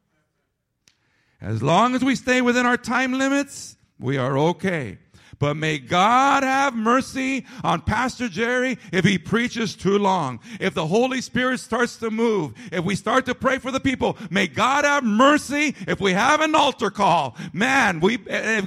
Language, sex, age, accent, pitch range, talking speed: English, male, 50-69, American, 175-260 Hz, 170 wpm